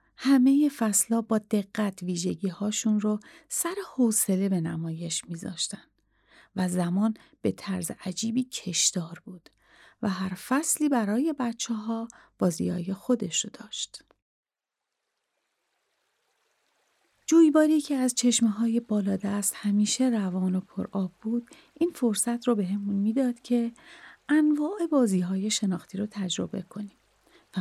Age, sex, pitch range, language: 40-59, female, 195-255 Hz, Persian